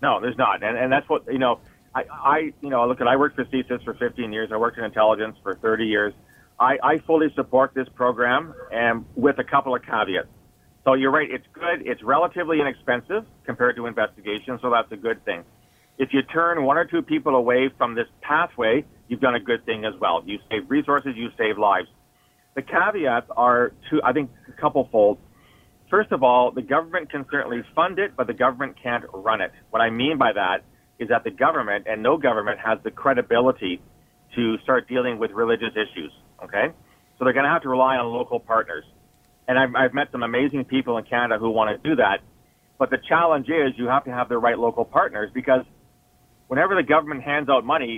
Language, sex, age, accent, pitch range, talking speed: English, male, 40-59, American, 115-140 Hz, 215 wpm